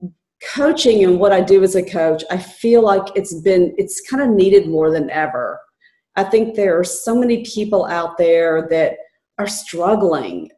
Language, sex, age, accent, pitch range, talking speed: English, female, 50-69, American, 165-210 Hz, 175 wpm